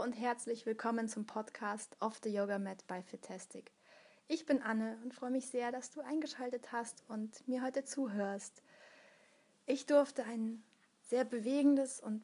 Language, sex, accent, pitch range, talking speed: English, female, German, 220-255 Hz, 155 wpm